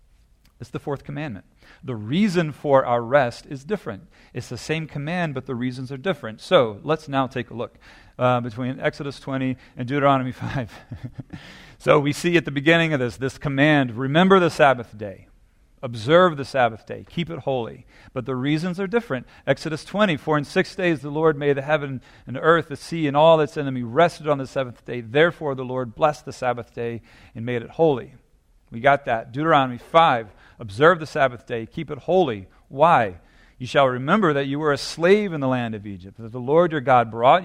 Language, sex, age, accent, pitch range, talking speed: English, male, 40-59, American, 120-150 Hz, 205 wpm